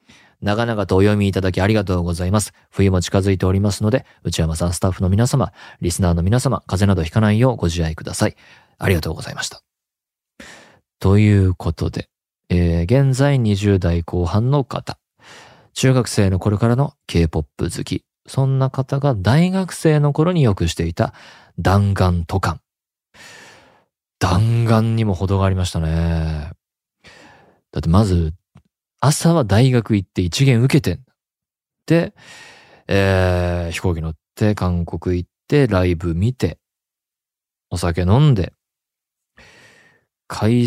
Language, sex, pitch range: Japanese, male, 90-115 Hz